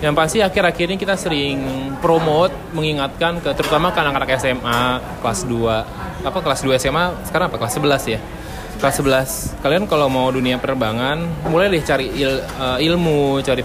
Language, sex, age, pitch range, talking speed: Indonesian, male, 20-39, 125-165 Hz, 160 wpm